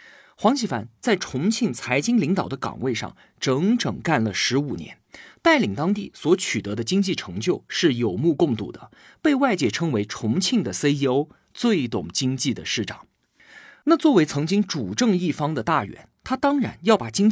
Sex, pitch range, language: male, 135-220 Hz, Chinese